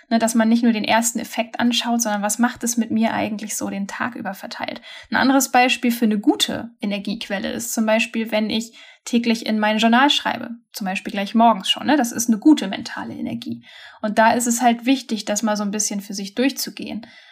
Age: 10-29